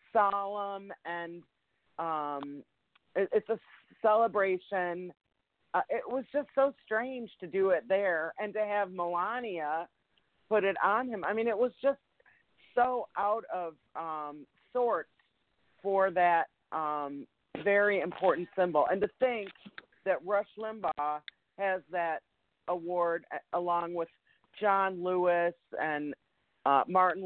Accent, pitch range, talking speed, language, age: American, 170-215 Hz, 125 wpm, English, 40-59